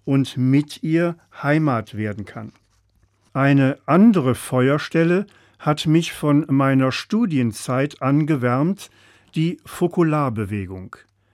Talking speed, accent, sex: 90 wpm, German, male